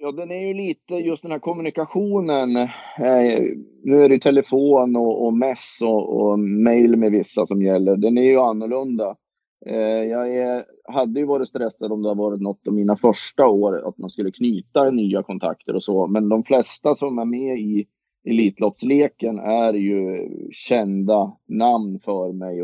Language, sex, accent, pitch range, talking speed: Swedish, male, native, 100-125 Hz, 180 wpm